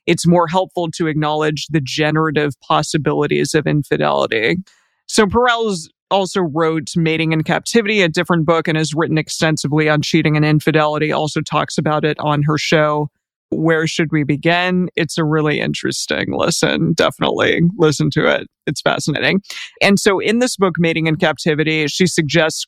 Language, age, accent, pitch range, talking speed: English, 20-39, American, 150-180 Hz, 160 wpm